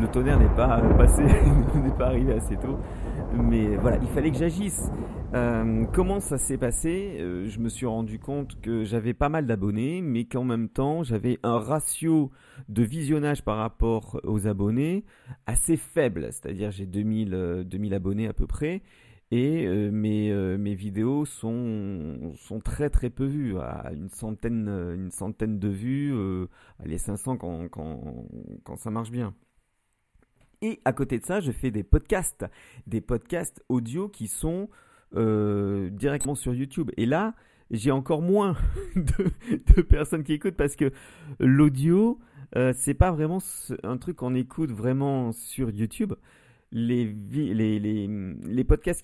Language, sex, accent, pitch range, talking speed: French, male, French, 105-145 Hz, 165 wpm